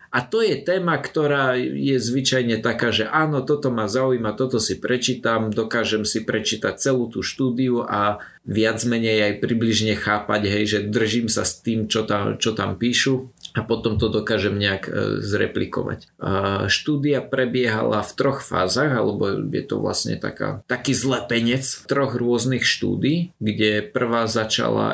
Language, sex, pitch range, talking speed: Slovak, male, 105-130 Hz, 155 wpm